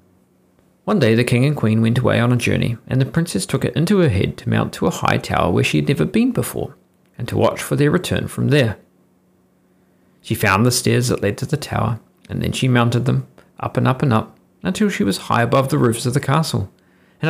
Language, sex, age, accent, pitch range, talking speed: English, male, 40-59, Australian, 90-140 Hz, 240 wpm